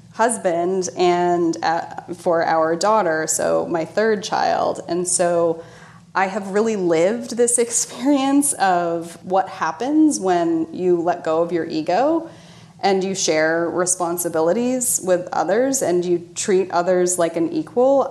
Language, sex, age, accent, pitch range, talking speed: English, female, 30-49, American, 170-210 Hz, 135 wpm